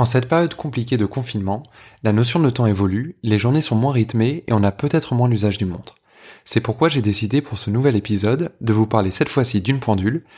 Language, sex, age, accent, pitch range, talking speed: French, male, 20-39, French, 110-145 Hz, 225 wpm